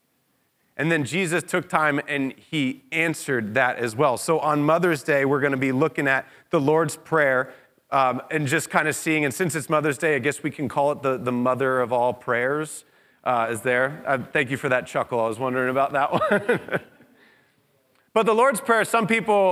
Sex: male